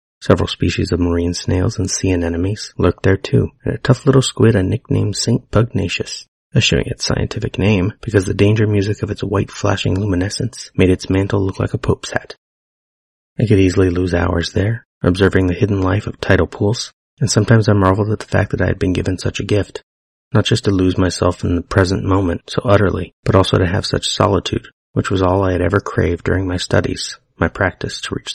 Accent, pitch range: American, 90-110 Hz